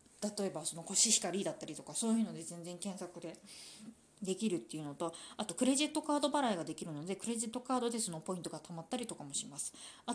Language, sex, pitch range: Japanese, female, 180-235 Hz